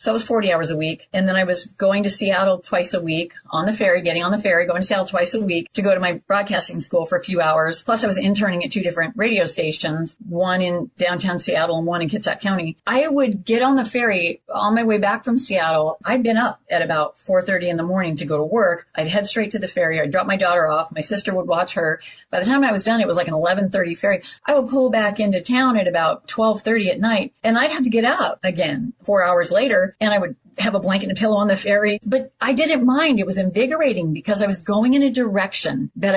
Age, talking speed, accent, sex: 40-59, 265 wpm, American, female